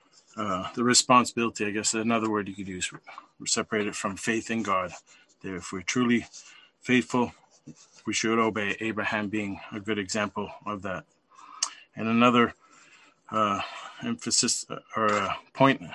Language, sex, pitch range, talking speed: English, male, 110-125 Hz, 150 wpm